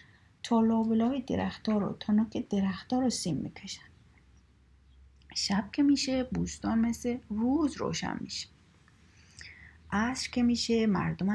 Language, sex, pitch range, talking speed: Persian, female, 165-220 Hz, 125 wpm